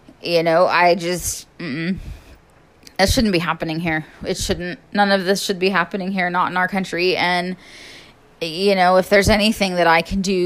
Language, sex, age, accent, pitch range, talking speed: English, female, 20-39, American, 180-225 Hz, 190 wpm